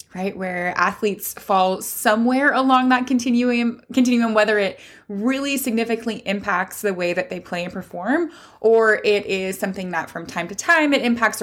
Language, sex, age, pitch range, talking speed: English, female, 20-39, 190-245 Hz, 170 wpm